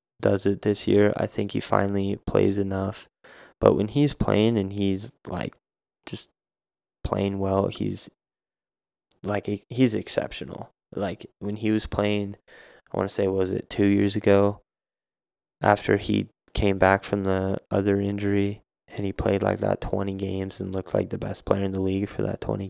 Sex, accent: male, American